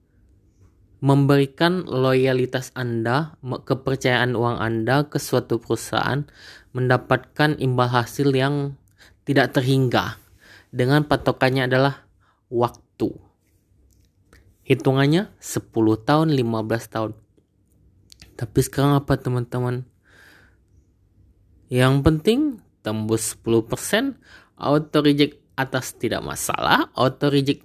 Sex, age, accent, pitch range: male, 20-39, native, 105-140 Hz